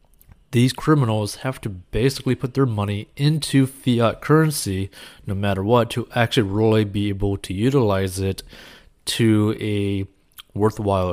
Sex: male